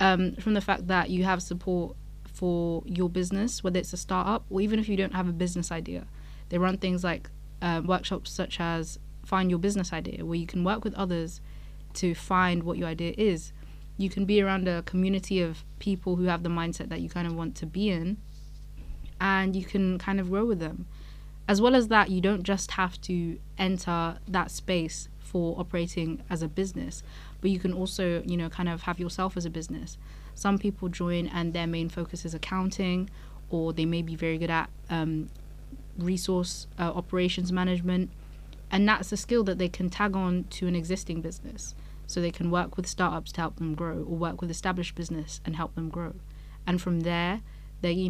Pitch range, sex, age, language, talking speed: 170-190 Hz, female, 20-39, English, 205 wpm